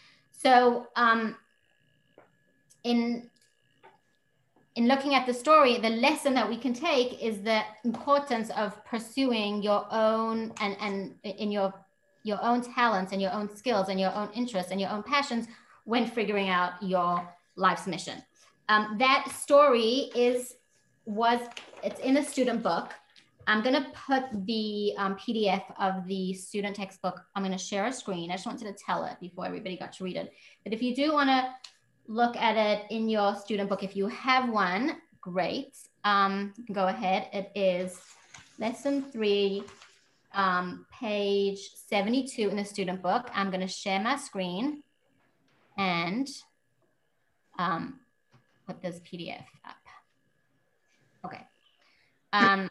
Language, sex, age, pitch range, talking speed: English, female, 30-49, 195-245 Hz, 150 wpm